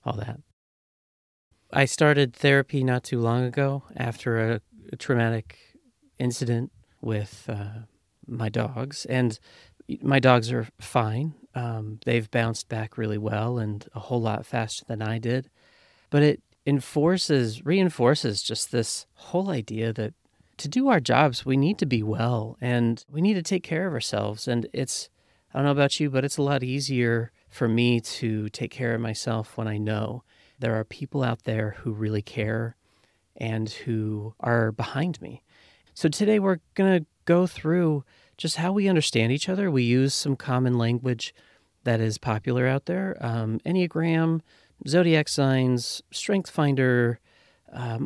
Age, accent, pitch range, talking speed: 30-49, American, 110-145 Hz, 160 wpm